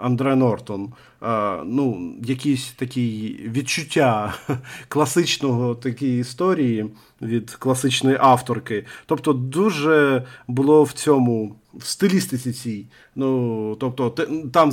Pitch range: 120-140 Hz